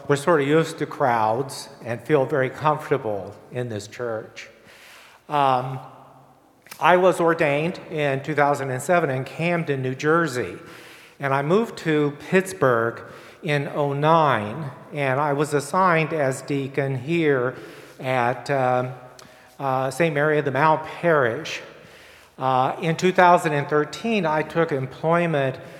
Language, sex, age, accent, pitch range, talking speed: English, male, 50-69, American, 130-155 Hz, 120 wpm